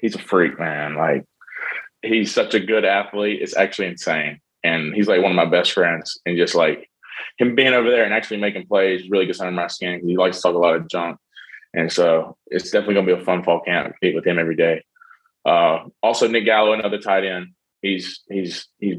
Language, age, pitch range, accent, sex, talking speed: English, 20-39, 90-105 Hz, American, male, 225 wpm